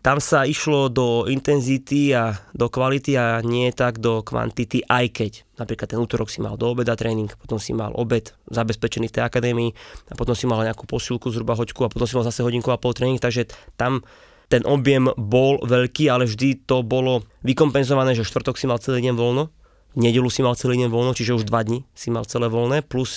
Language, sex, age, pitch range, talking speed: Slovak, male, 20-39, 115-135 Hz, 210 wpm